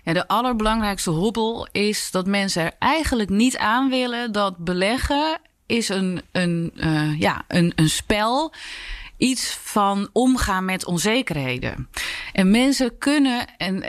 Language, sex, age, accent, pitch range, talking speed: English, female, 30-49, Dutch, 180-235 Hz, 110 wpm